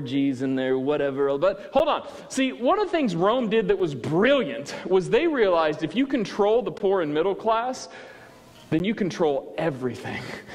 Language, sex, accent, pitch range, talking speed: English, male, American, 150-245 Hz, 175 wpm